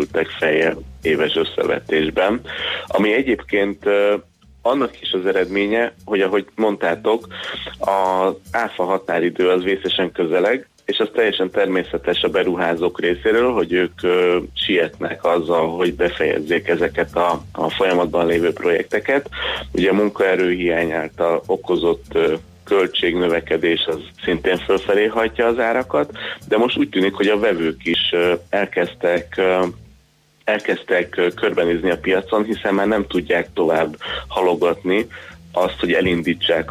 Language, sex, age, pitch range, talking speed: Hungarian, male, 30-49, 85-100 Hz, 120 wpm